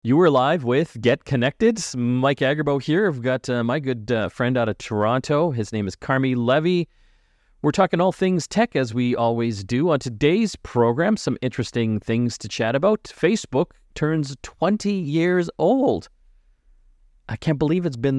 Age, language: 40-59, English